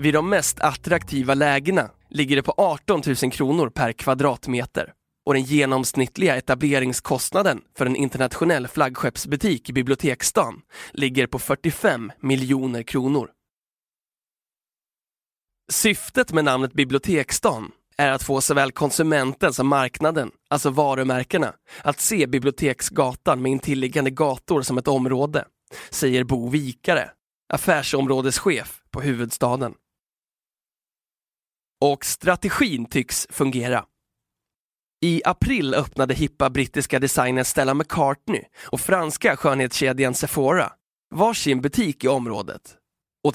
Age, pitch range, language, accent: 20-39, 130-150 Hz, Swedish, native